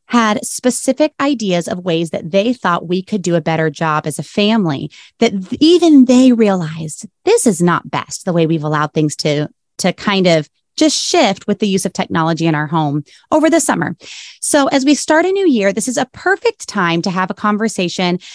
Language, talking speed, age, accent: English, 205 wpm, 30-49, American